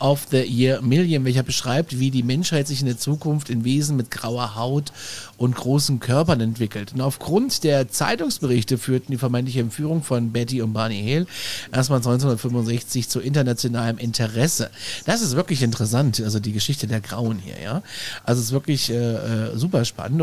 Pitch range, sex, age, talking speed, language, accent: 115-145 Hz, male, 40-59, 175 wpm, German, German